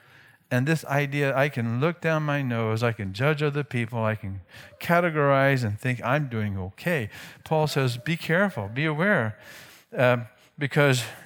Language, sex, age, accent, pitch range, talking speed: English, male, 50-69, American, 120-160 Hz, 160 wpm